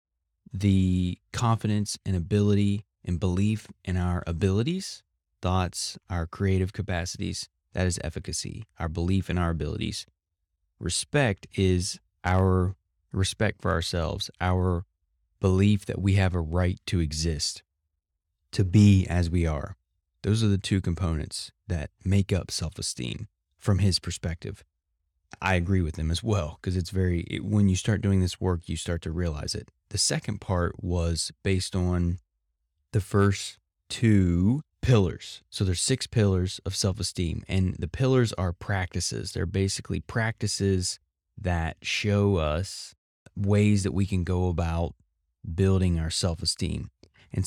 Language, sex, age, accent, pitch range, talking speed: English, male, 20-39, American, 85-100 Hz, 140 wpm